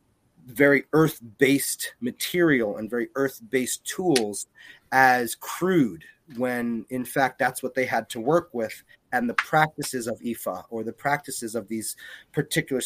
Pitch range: 115-145 Hz